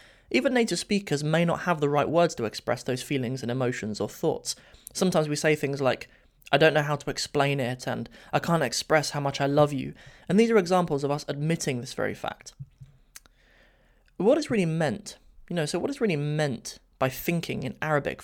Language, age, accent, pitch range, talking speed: English, 20-39, British, 140-180 Hz, 205 wpm